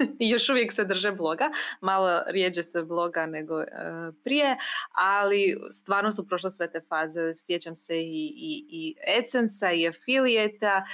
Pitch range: 170-225 Hz